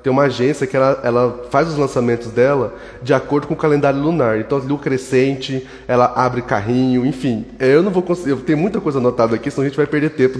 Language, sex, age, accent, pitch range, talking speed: Portuguese, male, 20-39, Brazilian, 120-155 Hz, 220 wpm